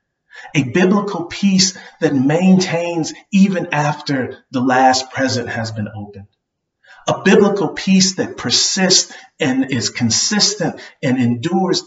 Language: English